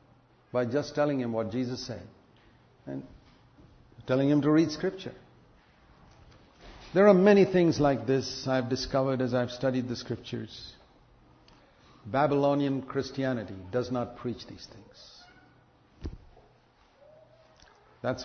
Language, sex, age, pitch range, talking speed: English, male, 60-79, 125-175 Hz, 120 wpm